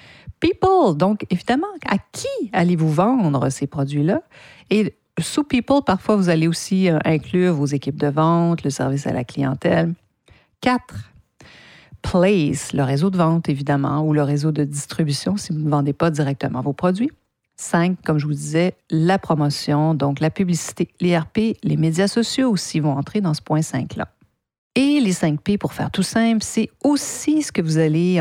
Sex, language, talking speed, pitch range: female, French, 170 wpm, 150-200 Hz